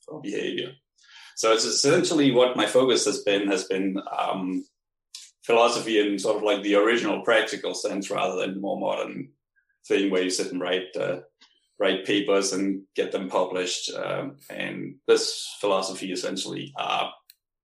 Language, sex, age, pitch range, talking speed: English, male, 20-39, 100-125 Hz, 150 wpm